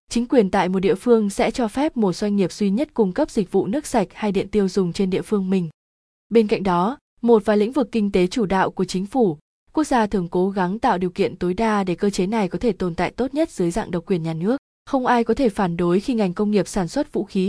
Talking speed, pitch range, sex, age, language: 280 wpm, 185-230 Hz, female, 20-39, Vietnamese